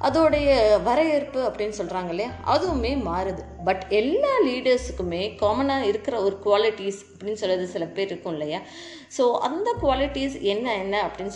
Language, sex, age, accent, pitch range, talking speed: Tamil, female, 20-39, native, 195-275 Hz, 130 wpm